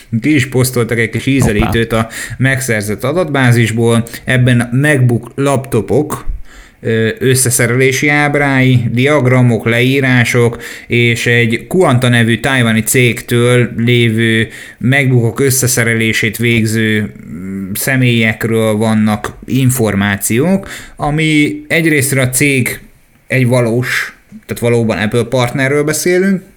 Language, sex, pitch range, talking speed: Hungarian, male, 110-130 Hz, 95 wpm